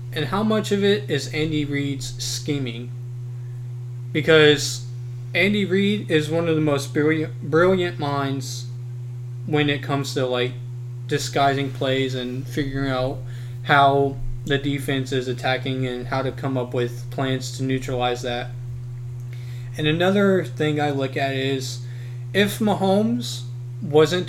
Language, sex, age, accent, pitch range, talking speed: English, male, 20-39, American, 120-140 Hz, 135 wpm